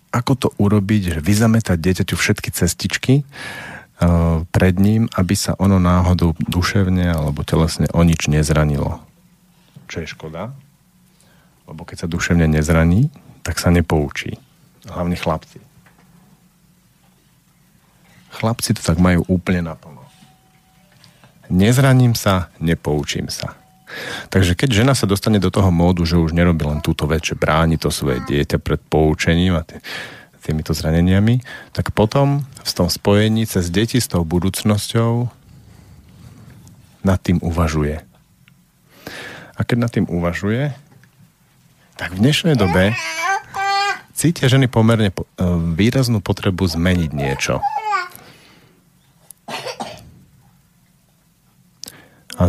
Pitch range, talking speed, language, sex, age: 85-125 Hz, 110 wpm, Slovak, male, 50-69